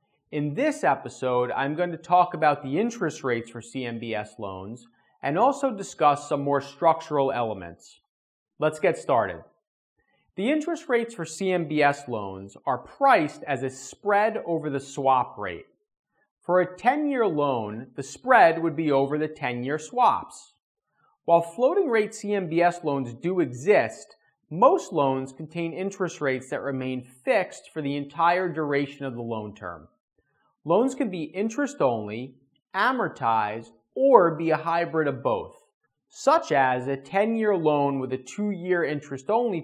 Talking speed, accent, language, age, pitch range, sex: 140 wpm, American, English, 30-49, 130-185 Hz, male